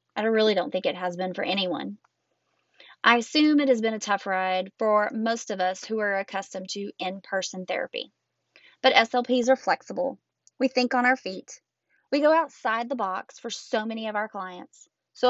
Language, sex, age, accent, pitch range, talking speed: English, female, 20-39, American, 195-250 Hz, 190 wpm